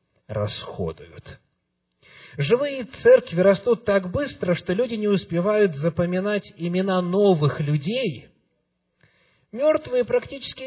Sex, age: male, 50-69